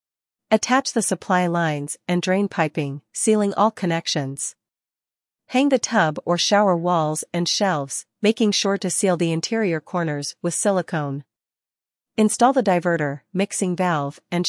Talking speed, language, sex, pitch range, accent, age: 135 wpm, English, female, 160-205 Hz, American, 40-59